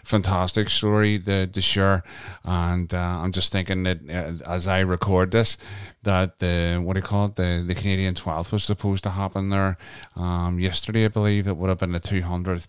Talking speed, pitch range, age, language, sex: 205 wpm, 90-100 Hz, 30-49, English, male